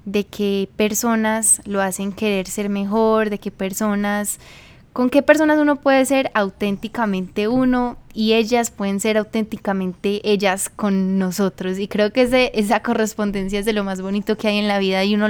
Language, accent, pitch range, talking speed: English, Colombian, 195-225 Hz, 175 wpm